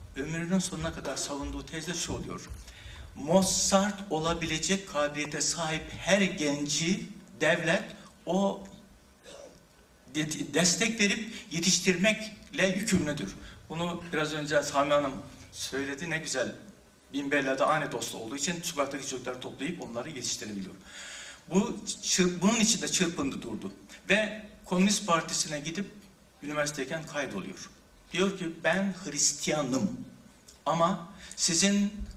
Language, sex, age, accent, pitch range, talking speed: Turkish, male, 60-79, native, 145-190 Hz, 105 wpm